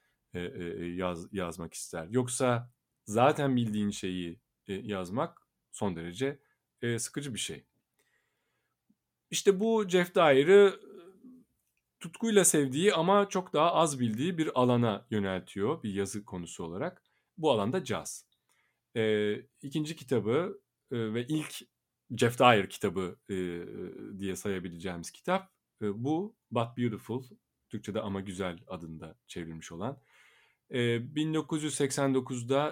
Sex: male